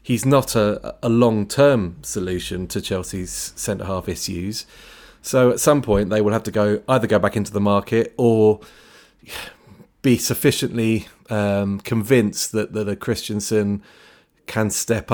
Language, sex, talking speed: English, male, 150 wpm